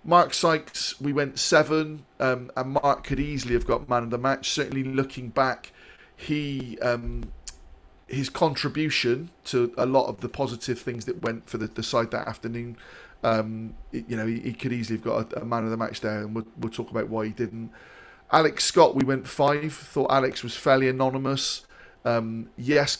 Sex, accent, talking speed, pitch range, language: male, British, 195 wpm, 120-140 Hz, English